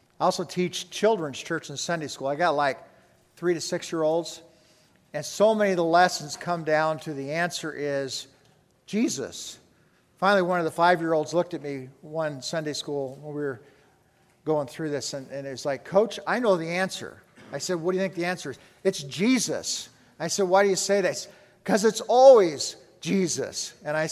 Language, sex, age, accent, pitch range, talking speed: English, male, 50-69, American, 145-180 Hz, 195 wpm